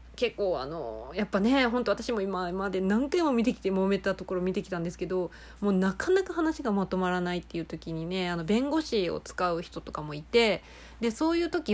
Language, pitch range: Japanese, 180-245 Hz